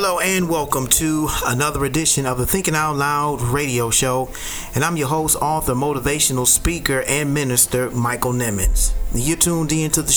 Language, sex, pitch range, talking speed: English, male, 120-140 Hz, 170 wpm